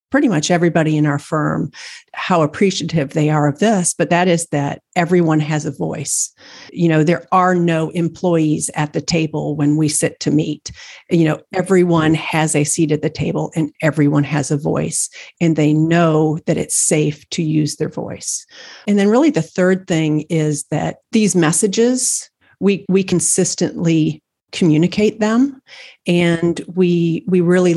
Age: 50-69